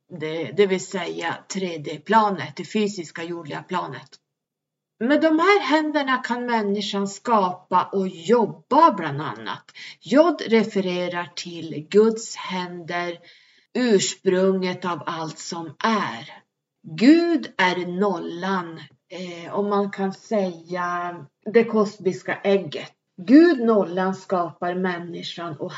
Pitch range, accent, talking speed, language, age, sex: 170-205 Hz, native, 105 wpm, Swedish, 30-49, female